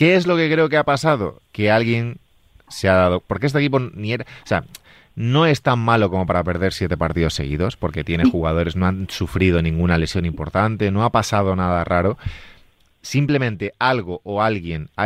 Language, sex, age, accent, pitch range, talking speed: Spanish, male, 30-49, Spanish, 90-125 Hz, 180 wpm